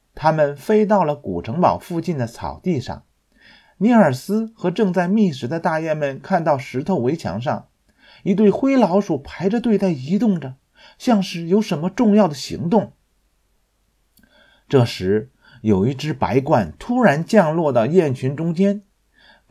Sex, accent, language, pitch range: male, native, Chinese, 145-200 Hz